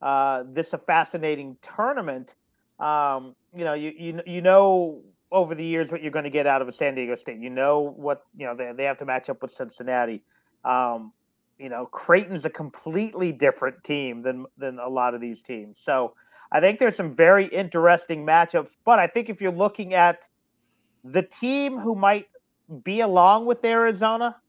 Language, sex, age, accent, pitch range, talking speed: English, male, 40-59, American, 135-180 Hz, 190 wpm